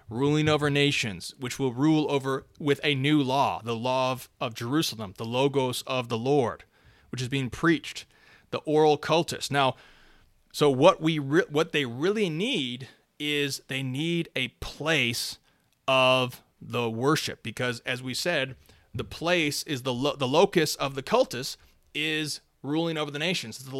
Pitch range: 130-155 Hz